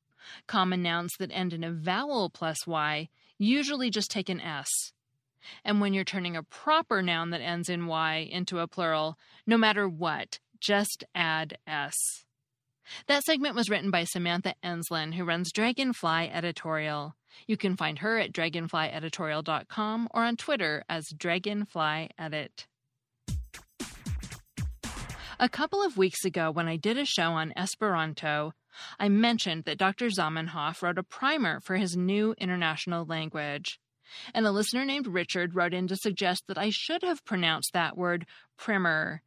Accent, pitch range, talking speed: American, 160-215 Hz, 150 wpm